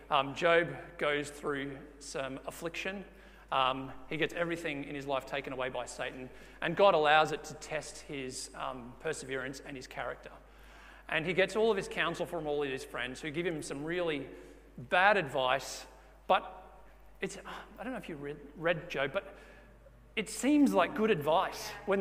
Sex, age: male, 40-59